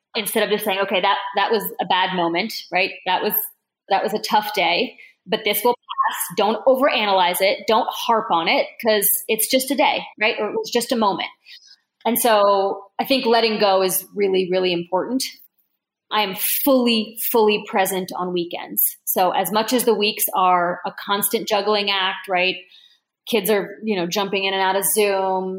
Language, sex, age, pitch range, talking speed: English, female, 20-39, 185-220 Hz, 190 wpm